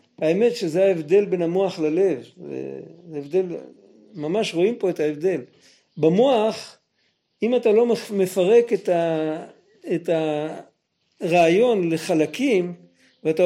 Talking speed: 100 wpm